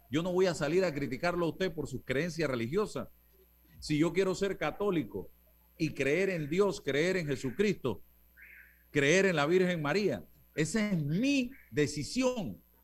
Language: Spanish